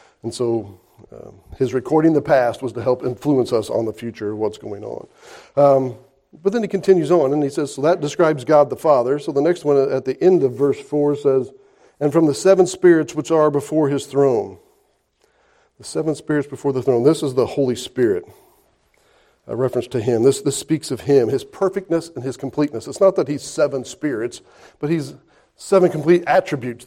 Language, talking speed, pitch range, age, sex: English, 205 wpm, 135-180 Hz, 40-59, male